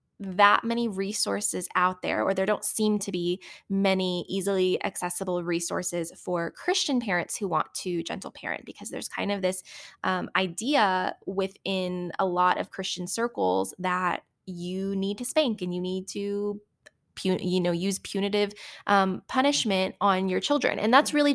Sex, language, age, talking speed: female, English, 20-39, 165 wpm